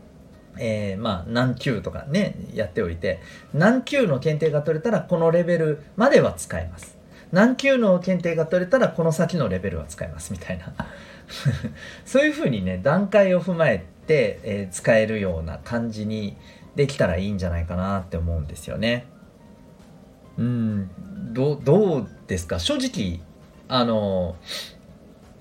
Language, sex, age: Japanese, male, 40-59